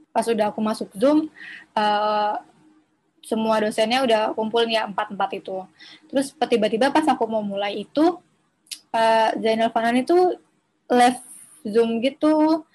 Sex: female